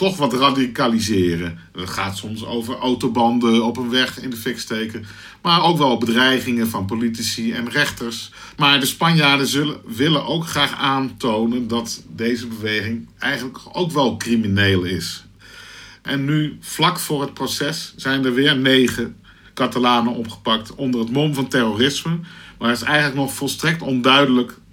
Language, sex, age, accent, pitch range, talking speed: Dutch, male, 50-69, Dutch, 115-145 Hz, 150 wpm